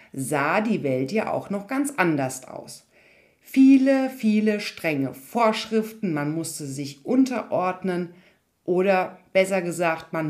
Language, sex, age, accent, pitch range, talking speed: German, female, 50-69, German, 155-240 Hz, 120 wpm